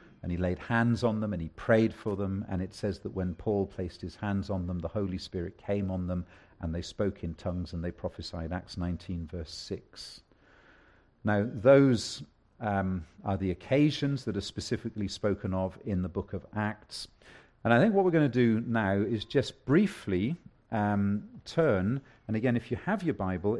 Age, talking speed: 40-59, 195 wpm